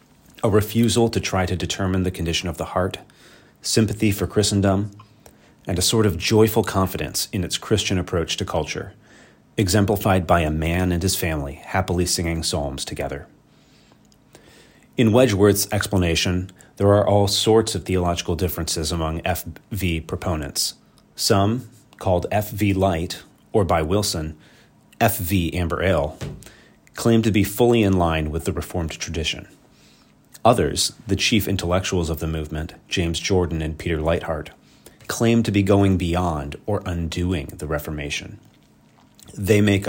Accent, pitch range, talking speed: American, 85-105 Hz, 140 wpm